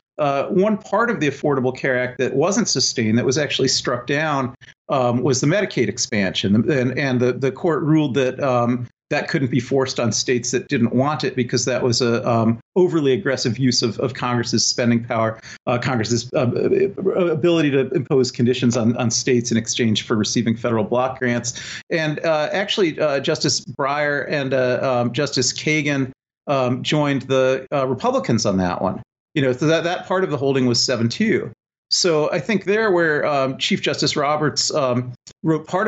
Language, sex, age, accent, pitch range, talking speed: English, male, 40-59, American, 120-150 Hz, 185 wpm